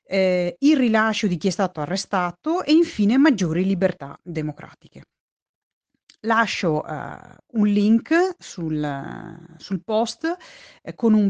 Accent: native